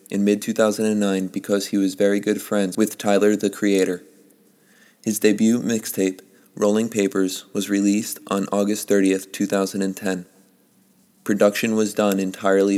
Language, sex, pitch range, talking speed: English, male, 100-105 Hz, 125 wpm